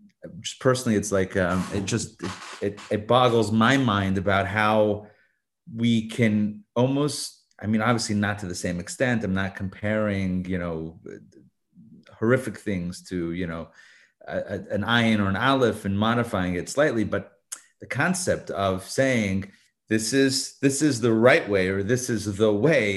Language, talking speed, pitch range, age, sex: English, 165 wpm, 100-125 Hz, 30-49, male